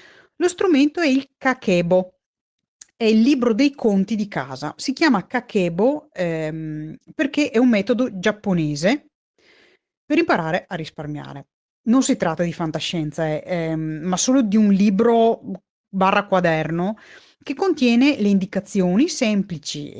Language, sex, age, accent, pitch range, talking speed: Italian, female, 30-49, native, 165-245 Hz, 130 wpm